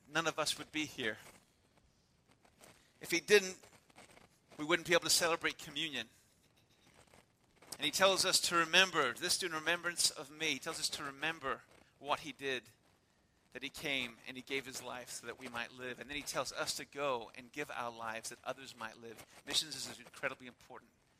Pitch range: 135-165 Hz